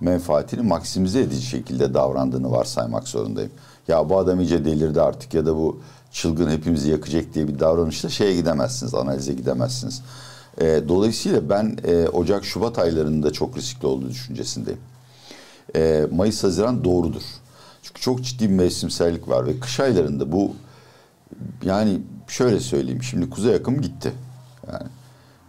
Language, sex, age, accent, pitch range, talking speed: Turkish, male, 60-79, native, 70-115 Hz, 135 wpm